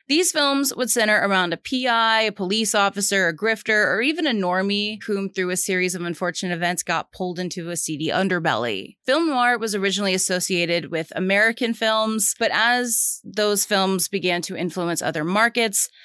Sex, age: female, 30-49